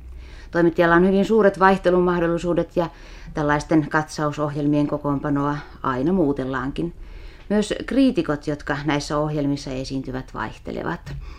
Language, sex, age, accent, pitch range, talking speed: Finnish, female, 30-49, native, 140-165 Hz, 95 wpm